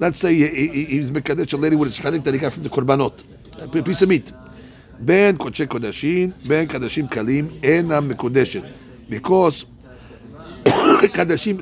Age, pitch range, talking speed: 50-69, 130-165 Hz, 150 wpm